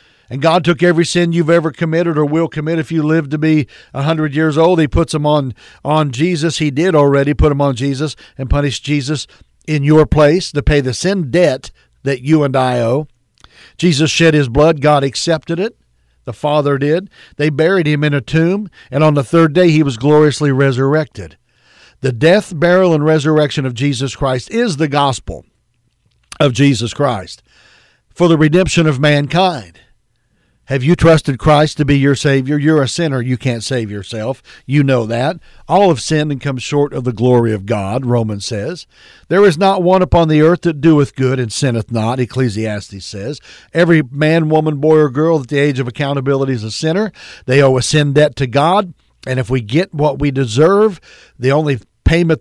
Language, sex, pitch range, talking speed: English, male, 130-160 Hz, 195 wpm